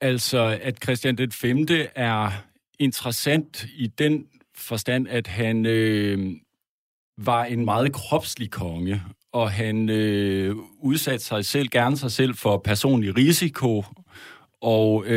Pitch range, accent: 100-130 Hz, native